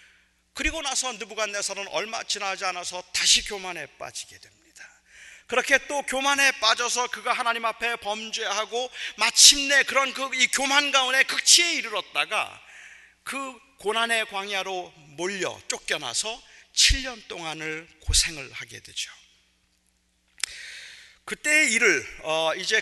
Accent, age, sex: native, 40-59, male